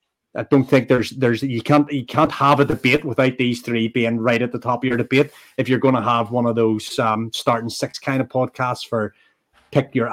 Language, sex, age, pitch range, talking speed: English, male, 30-49, 115-135 Hz, 230 wpm